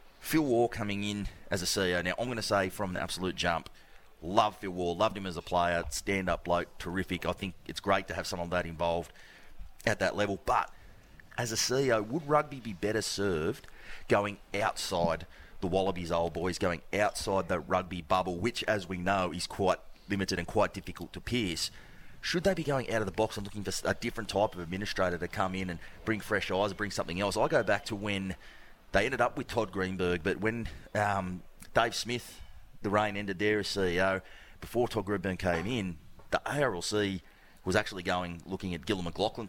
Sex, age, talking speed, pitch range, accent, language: male, 30-49, 205 wpm, 90-105 Hz, Australian, English